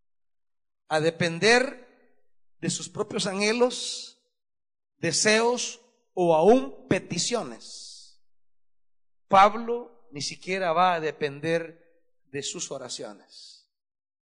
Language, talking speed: Spanish, 80 wpm